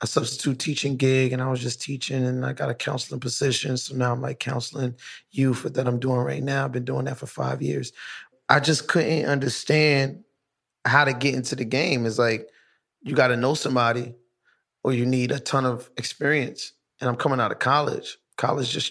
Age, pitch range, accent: 20-39, 115-130 Hz, American